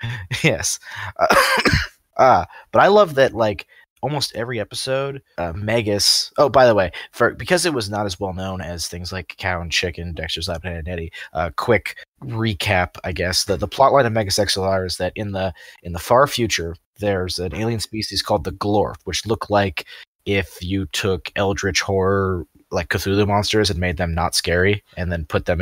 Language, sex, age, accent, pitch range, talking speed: English, male, 20-39, American, 90-110 Hz, 190 wpm